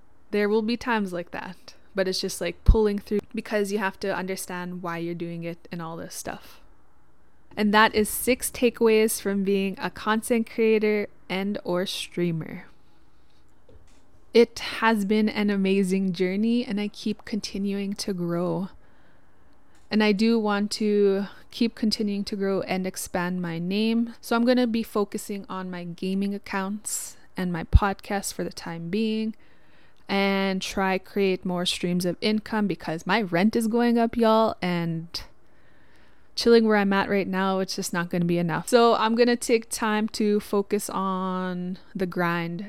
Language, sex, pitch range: English, female, 180-220 Hz